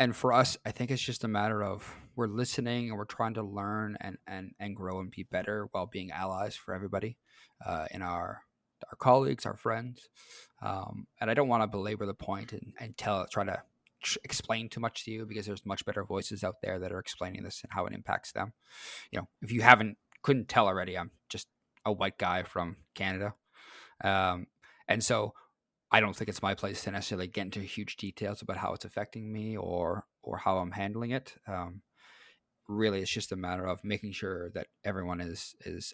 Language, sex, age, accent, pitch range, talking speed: English, male, 20-39, American, 95-110 Hz, 210 wpm